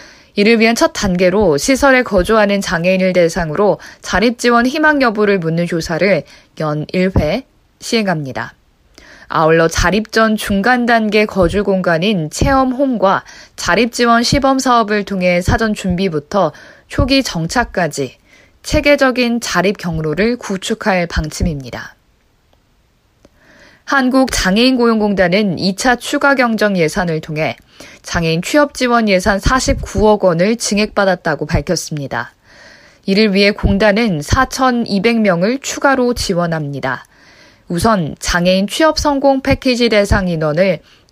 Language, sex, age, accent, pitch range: Korean, female, 20-39, native, 175-235 Hz